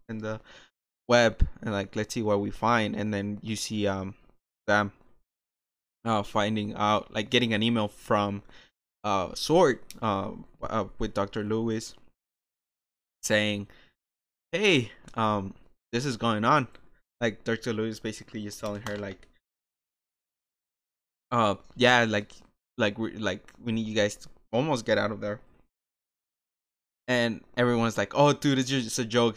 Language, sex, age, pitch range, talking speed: English, male, 20-39, 105-115 Hz, 145 wpm